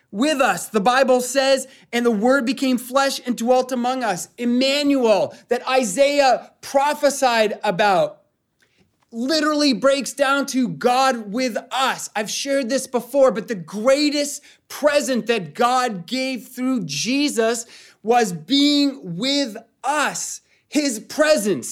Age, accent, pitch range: 30-49, American, 215-280 Hz